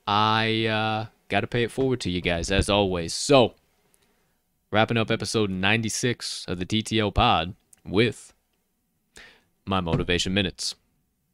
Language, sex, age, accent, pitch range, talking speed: English, male, 20-39, American, 95-115 Hz, 125 wpm